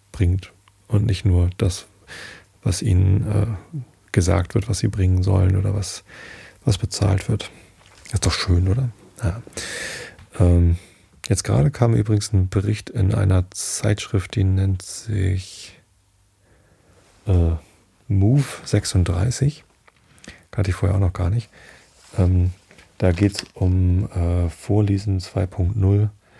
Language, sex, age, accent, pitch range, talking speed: German, male, 40-59, German, 90-110 Hz, 125 wpm